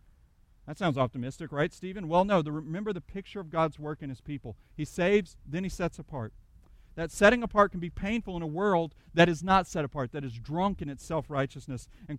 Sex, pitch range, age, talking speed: male, 150-200 Hz, 40-59, 210 wpm